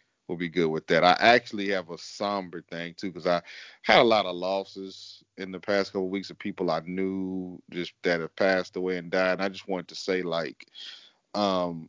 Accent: American